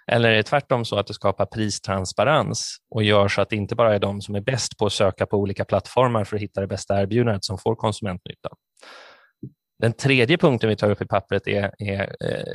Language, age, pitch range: Swedish, 20-39, 100-120 Hz